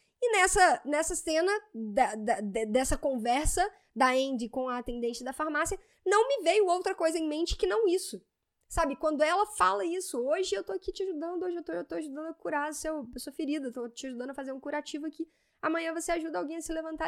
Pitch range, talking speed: 235-345 Hz, 210 wpm